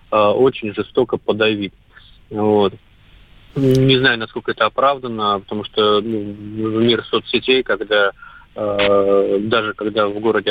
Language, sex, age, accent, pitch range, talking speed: Russian, male, 30-49, native, 100-115 Hz, 115 wpm